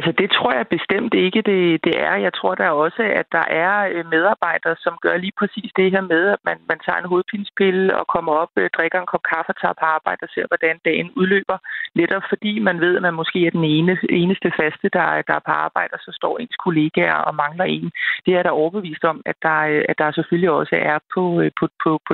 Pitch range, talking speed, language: 150-180 Hz, 230 wpm, Danish